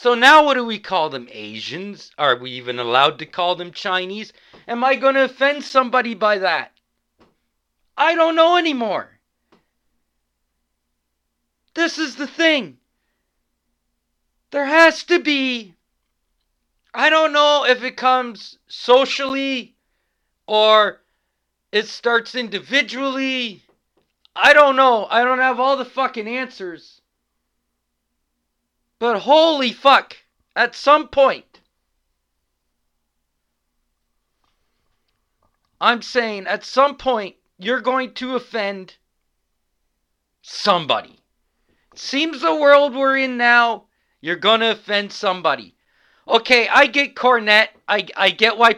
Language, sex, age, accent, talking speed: English, male, 40-59, American, 115 wpm